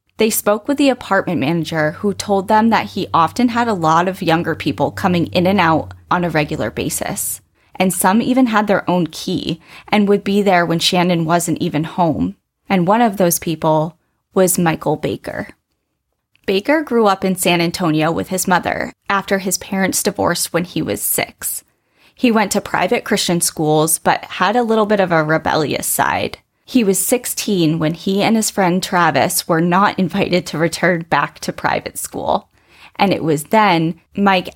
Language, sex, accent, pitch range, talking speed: English, female, American, 165-200 Hz, 180 wpm